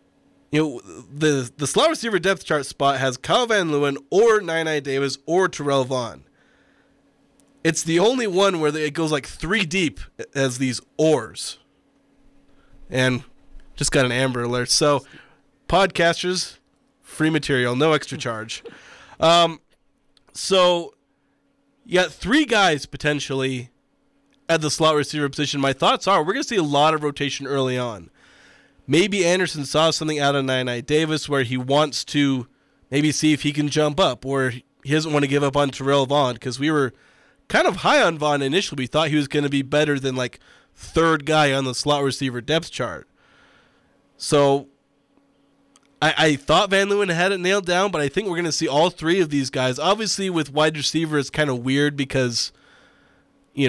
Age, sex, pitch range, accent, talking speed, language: 20-39, male, 135-165 Hz, American, 180 wpm, English